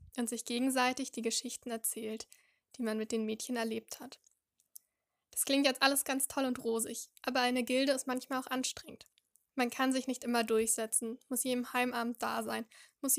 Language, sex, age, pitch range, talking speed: German, female, 10-29, 230-260 Hz, 180 wpm